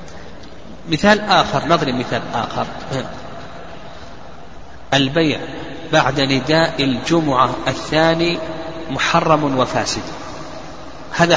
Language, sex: Arabic, male